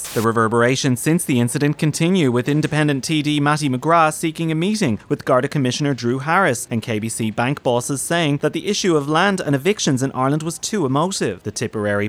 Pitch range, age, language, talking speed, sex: 120-165 Hz, 30-49, English, 190 wpm, male